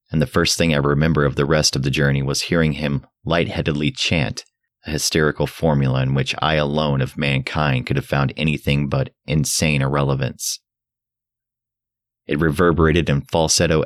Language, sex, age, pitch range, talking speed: English, male, 30-49, 70-115 Hz, 160 wpm